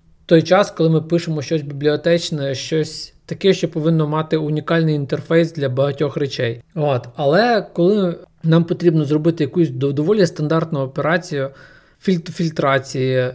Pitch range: 145-170 Hz